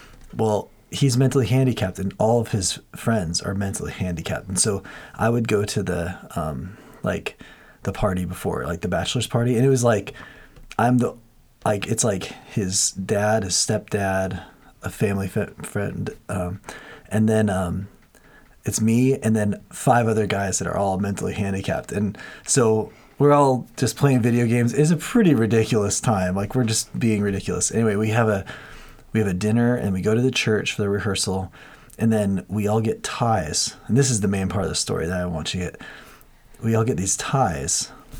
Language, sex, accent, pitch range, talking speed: English, male, American, 100-130 Hz, 190 wpm